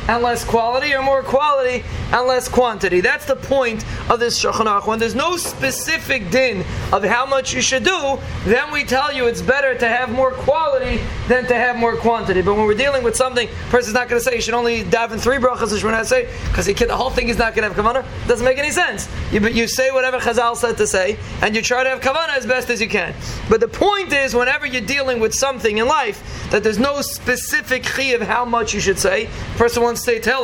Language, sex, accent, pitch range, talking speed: English, male, American, 230-265 Hz, 245 wpm